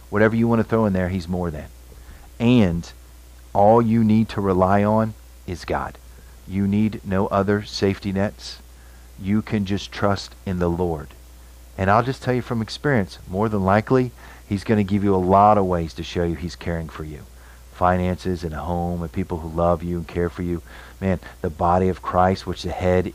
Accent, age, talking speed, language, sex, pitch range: American, 40-59, 205 wpm, English, male, 80-100 Hz